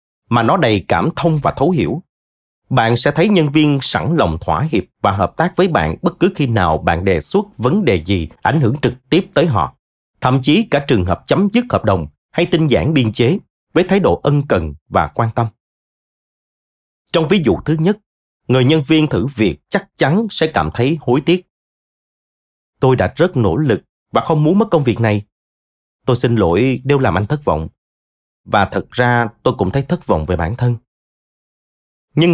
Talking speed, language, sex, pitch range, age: 200 wpm, Vietnamese, male, 100-160 Hz, 30-49